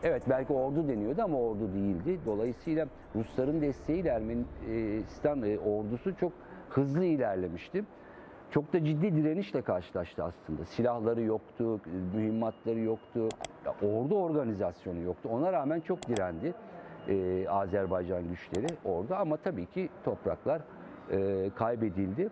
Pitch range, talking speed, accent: 100-135 Hz, 110 wpm, native